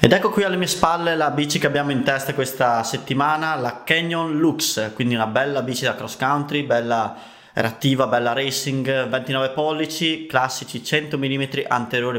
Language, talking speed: Italian, 165 wpm